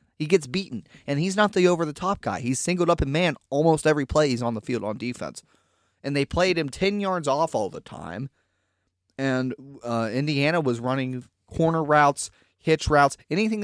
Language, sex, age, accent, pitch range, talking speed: English, male, 30-49, American, 110-150 Hz, 190 wpm